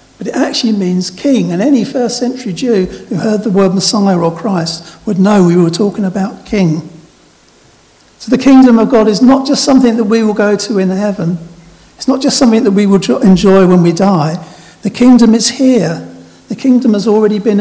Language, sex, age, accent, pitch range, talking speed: English, male, 50-69, British, 180-225 Hz, 205 wpm